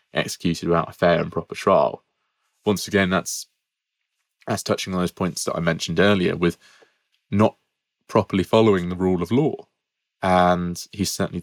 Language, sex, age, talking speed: English, male, 20-39, 160 wpm